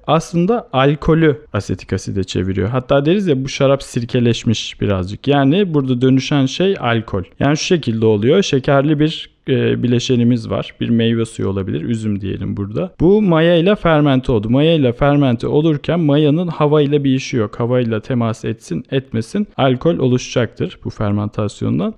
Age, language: 40-59, Turkish